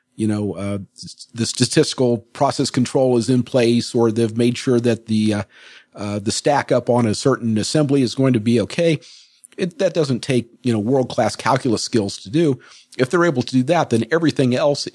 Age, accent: 50-69, American